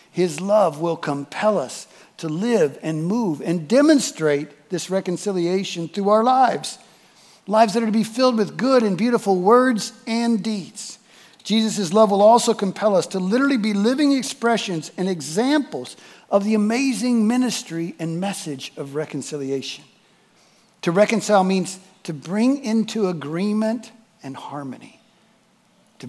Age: 50-69